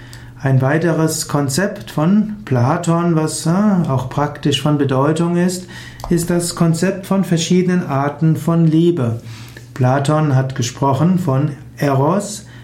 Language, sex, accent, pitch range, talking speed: German, male, German, 130-170 Hz, 115 wpm